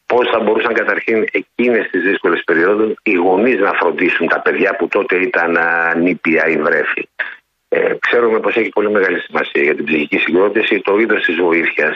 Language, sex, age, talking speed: Greek, male, 50-69, 200 wpm